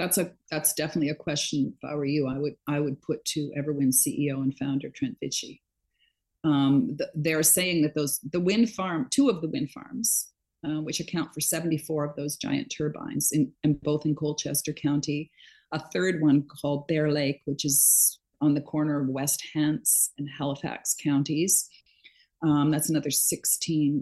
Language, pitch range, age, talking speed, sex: English, 145-165 Hz, 40-59, 185 wpm, female